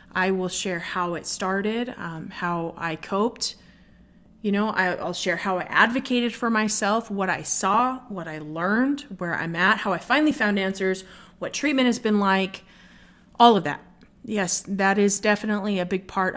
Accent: American